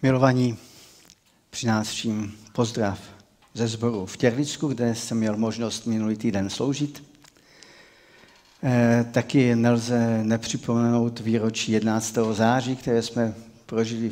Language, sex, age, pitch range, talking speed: Czech, male, 50-69, 110-120 Hz, 100 wpm